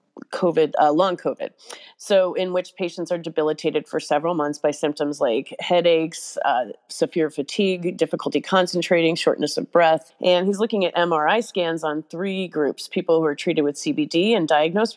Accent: American